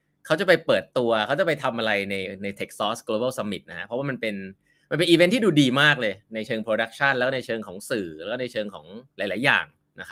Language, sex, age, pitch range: Thai, male, 20-39, 110-155 Hz